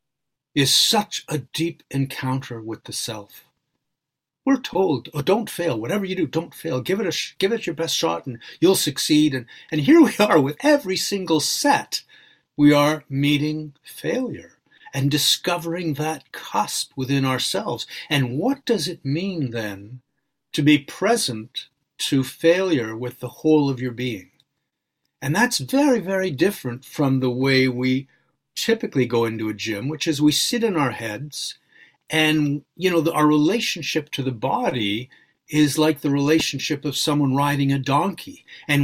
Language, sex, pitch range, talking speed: English, male, 130-165 Hz, 165 wpm